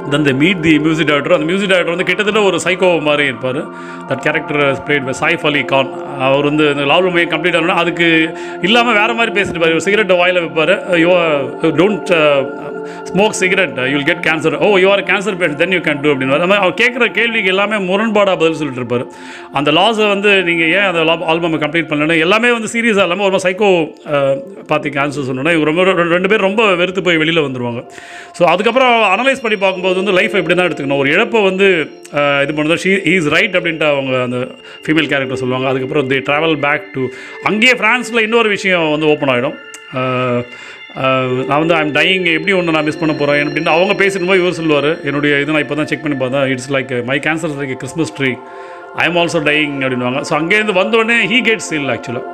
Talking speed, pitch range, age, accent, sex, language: 180 wpm, 145-190 Hz, 30-49, native, male, Tamil